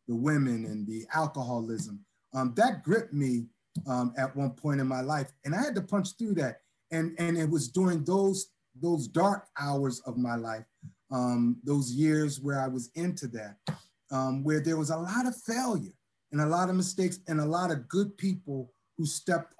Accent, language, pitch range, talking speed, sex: American, English, 130-170 Hz, 195 wpm, male